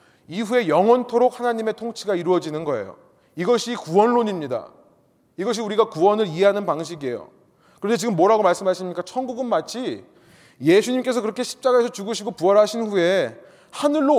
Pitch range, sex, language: 180-240 Hz, male, Korean